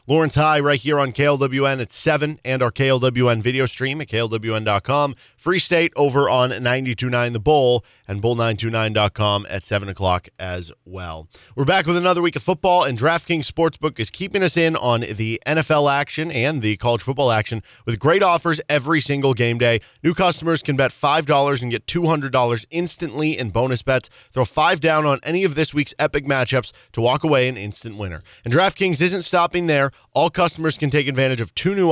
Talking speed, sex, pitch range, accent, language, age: 190 wpm, male, 115-155 Hz, American, English, 20-39